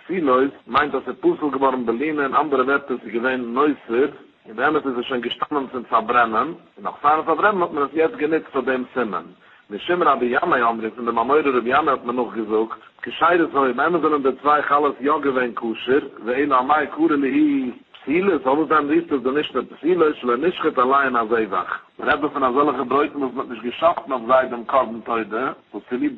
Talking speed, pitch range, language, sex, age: 125 wpm, 125-150 Hz, English, male, 60-79